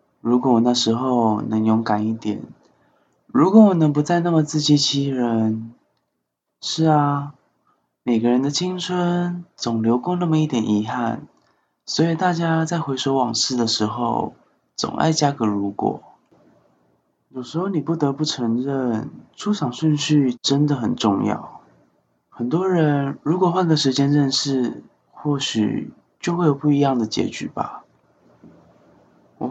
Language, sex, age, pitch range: Chinese, male, 20-39, 115-150 Hz